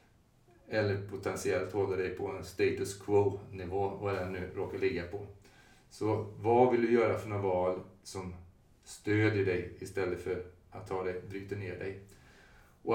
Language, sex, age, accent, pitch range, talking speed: Swedish, male, 30-49, native, 95-115 Hz, 160 wpm